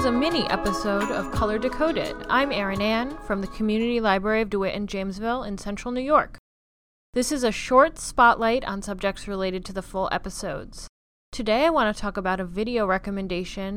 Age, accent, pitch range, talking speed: 20-39, American, 195-230 Hz, 190 wpm